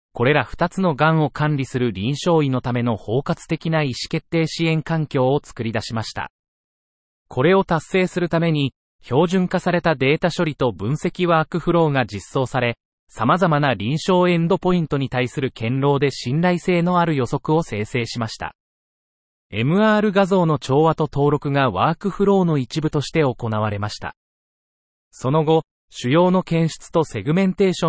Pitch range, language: 125-170 Hz, Japanese